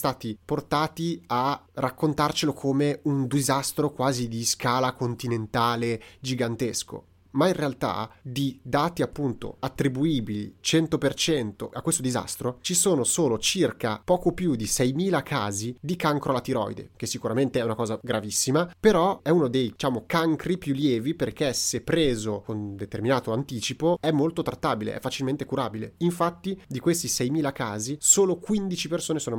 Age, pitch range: 30-49, 120-155 Hz